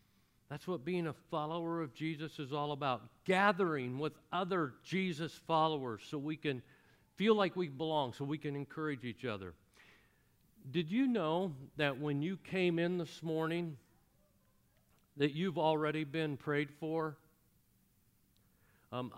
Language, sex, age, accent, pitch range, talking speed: English, male, 50-69, American, 120-160 Hz, 140 wpm